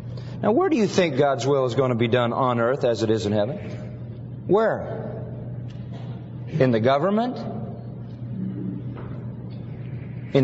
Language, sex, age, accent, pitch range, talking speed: English, male, 40-59, American, 120-165 Hz, 140 wpm